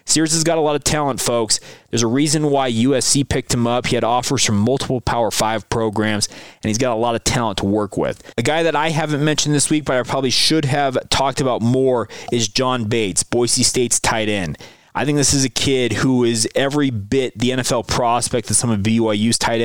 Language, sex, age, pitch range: English, male, 30-49, 115-140 Hz